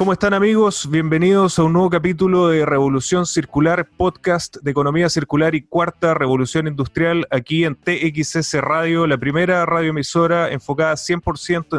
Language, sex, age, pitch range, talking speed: Spanish, male, 30-49, 140-175 Hz, 145 wpm